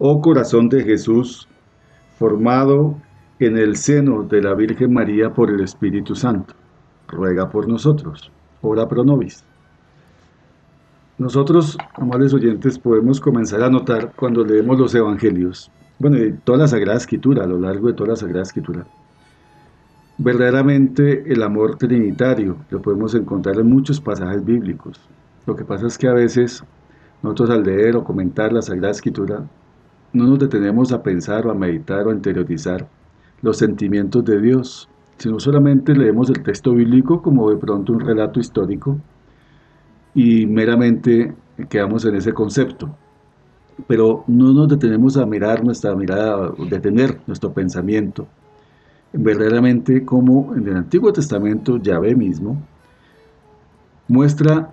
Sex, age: male, 40-59